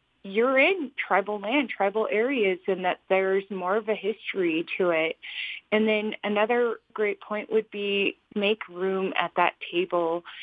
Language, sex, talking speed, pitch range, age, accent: English, female, 155 wpm, 180-220 Hz, 30-49, American